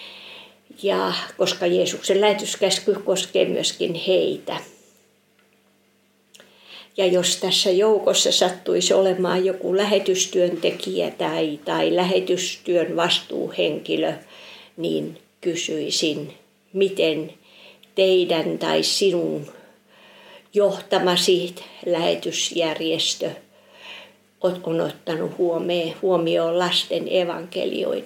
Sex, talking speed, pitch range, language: female, 70 wpm, 175-195 Hz, Finnish